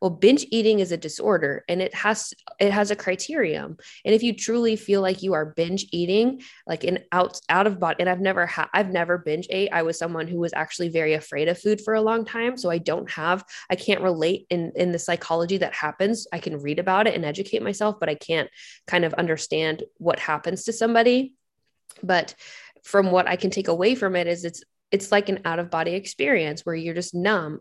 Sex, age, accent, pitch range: female, 20-39, American, 165-200 Hz